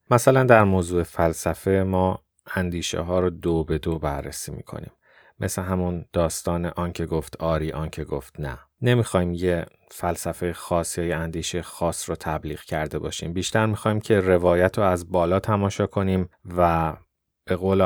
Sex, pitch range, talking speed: male, 85-95 Hz, 150 wpm